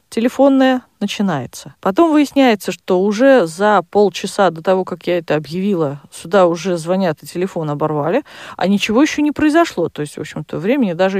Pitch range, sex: 175-245 Hz, female